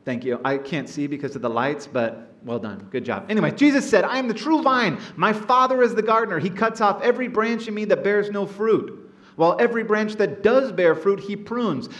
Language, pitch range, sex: English, 155-225 Hz, male